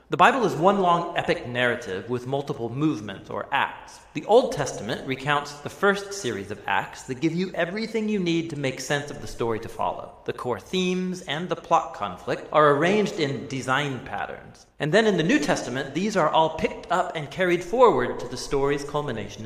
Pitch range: 130-185 Hz